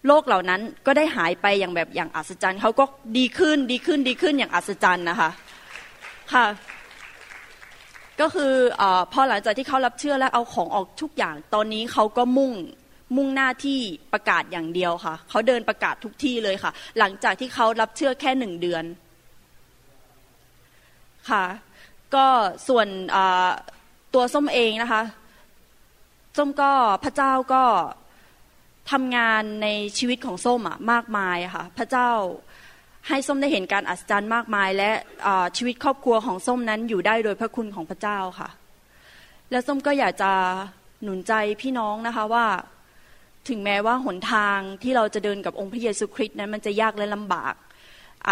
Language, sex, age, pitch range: Thai, female, 20-39, 200-255 Hz